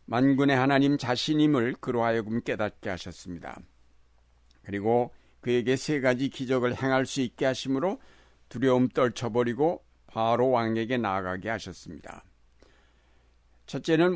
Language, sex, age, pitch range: Korean, male, 60-79, 100-130 Hz